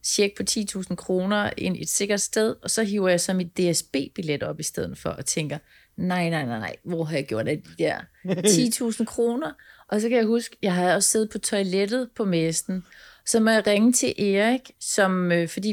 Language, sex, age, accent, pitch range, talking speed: Danish, female, 30-49, native, 180-225 Hz, 205 wpm